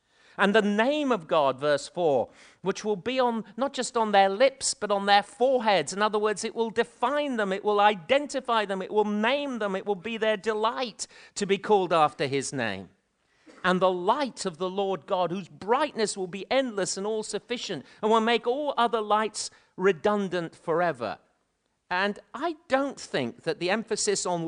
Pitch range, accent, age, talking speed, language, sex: 150-215 Hz, British, 50-69, 185 wpm, English, male